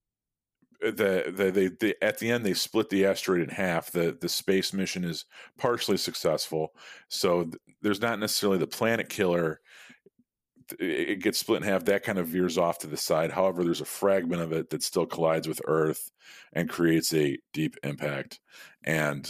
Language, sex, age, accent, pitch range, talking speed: English, male, 40-59, American, 75-100 Hz, 180 wpm